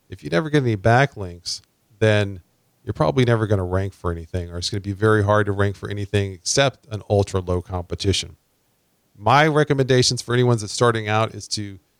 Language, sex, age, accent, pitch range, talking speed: English, male, 40-59, American, 100-120 Hz, 195 wpm